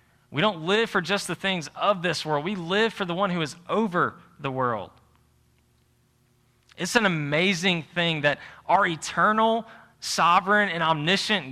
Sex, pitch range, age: male, 120-170 Hz, 20-39